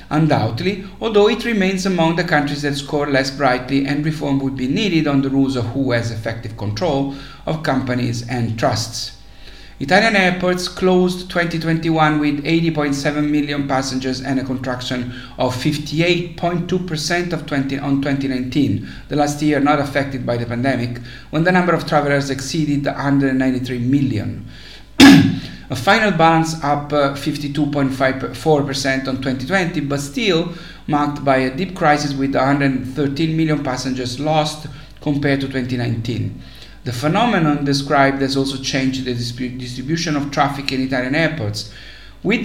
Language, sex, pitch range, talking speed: English, male, 130-155 Hz, 135 wpm